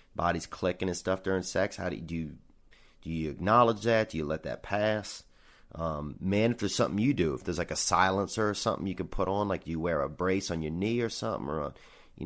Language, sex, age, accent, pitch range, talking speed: English, male, 30-49, American, 80-110 Hz, 250 wpm